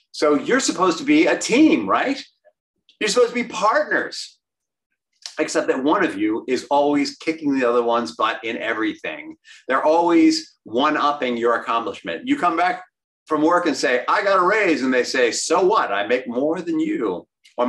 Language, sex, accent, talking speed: English, male, American, 185 wpm